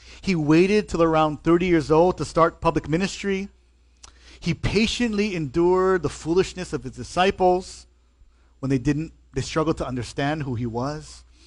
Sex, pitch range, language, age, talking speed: male, 115-180 Hz, English, 30-49, 150 wpm